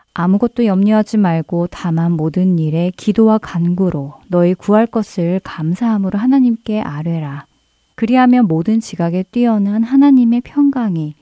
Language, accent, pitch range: Korean, native, 170-230 Hz